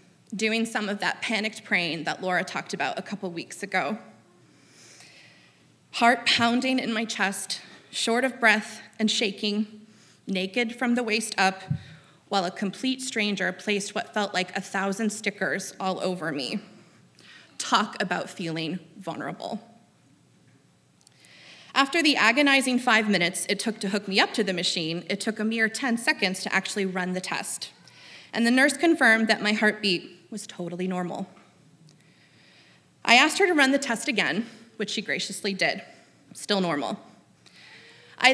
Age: 20-39